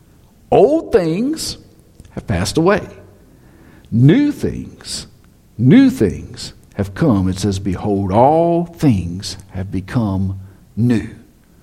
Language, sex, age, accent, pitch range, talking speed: English, male, 50-69, American, 165-265 Hz, 100 wpm